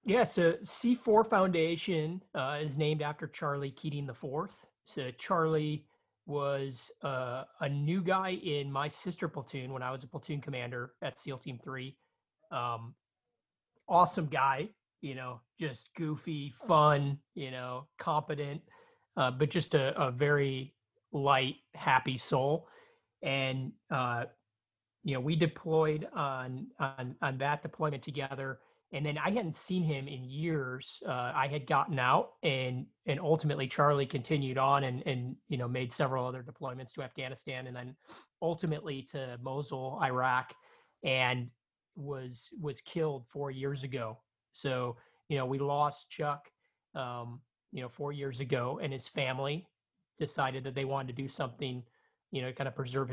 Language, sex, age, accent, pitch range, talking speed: English, male, 30-49, American, 130-150 Hz, 150 wpm